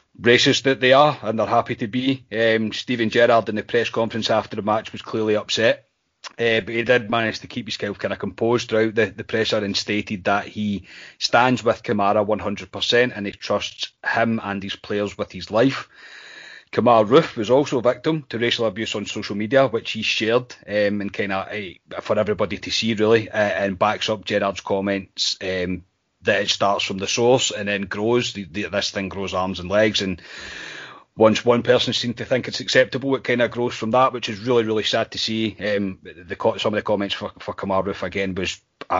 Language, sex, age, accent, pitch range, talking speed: English, male, 30-49, British, 100-115 Hz, 210 wpm